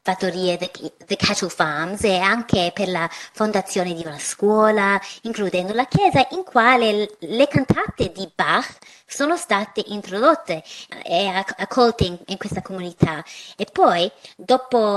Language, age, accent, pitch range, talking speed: Italian, 30-49, native, 180-230 Hz, 130 wpm